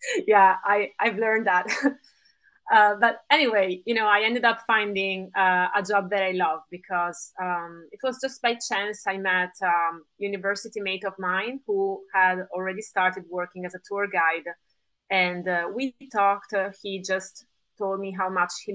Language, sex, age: English, female, 30-49